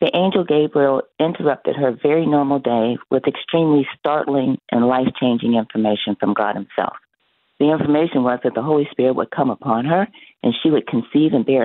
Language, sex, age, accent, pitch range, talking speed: English, female, 50-69, American, 125-190 Hz, 175 wpm